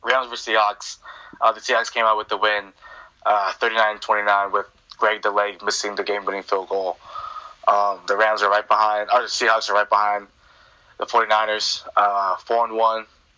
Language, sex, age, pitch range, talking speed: English, male, 20-39, 105-125 Hz, 180 wpm